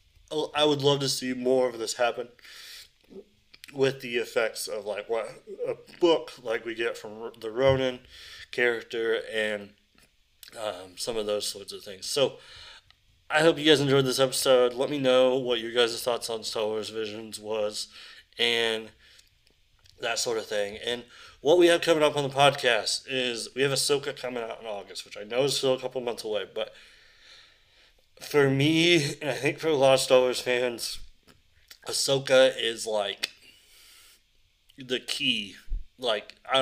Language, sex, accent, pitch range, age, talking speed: English, male, American, 110-150 Hz, 20-39, 170 wpm